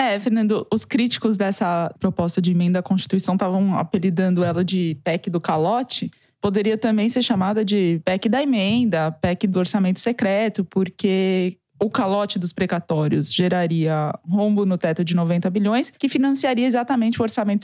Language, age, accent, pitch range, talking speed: Portuguese, 20-39, Brazilian, 185-220 Hz, 155 wpm